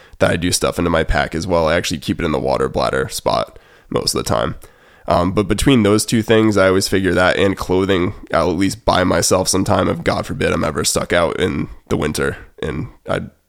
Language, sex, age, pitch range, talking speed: English, male, 20-39, 85-105 Hz, 235 wpm